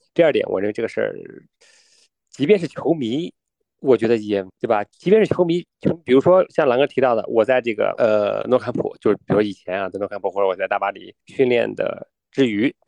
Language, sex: Chinese, male